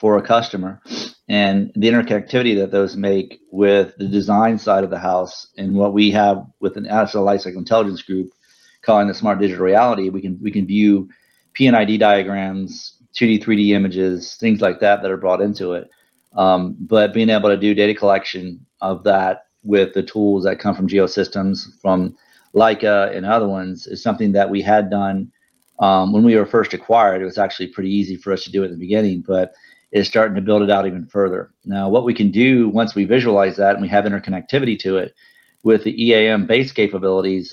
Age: 40-59